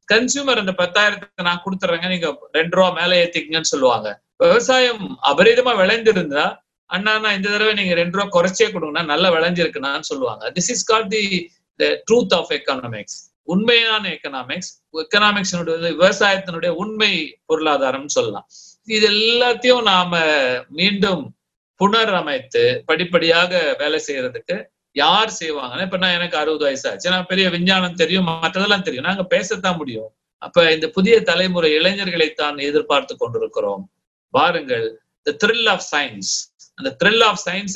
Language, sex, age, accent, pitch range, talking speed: Tamil, male, 50-69, native, 170-220 Hz, 90 wpm